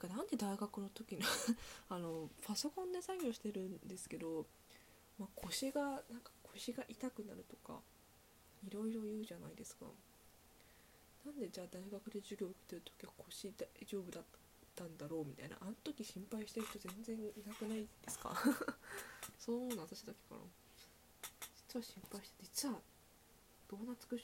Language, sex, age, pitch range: Japanese, female, 20-39, 170-225 Hz